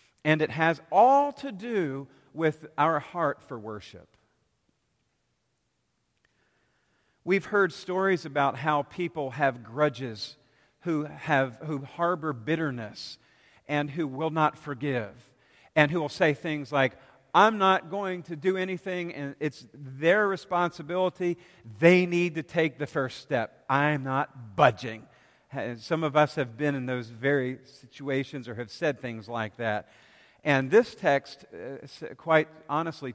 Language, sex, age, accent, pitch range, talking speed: English, male, 50-69, American, 130-165 Hz, 140 wpm